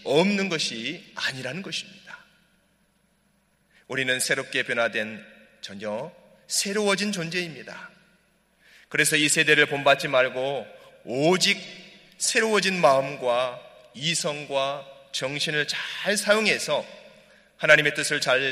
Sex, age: male, 30-49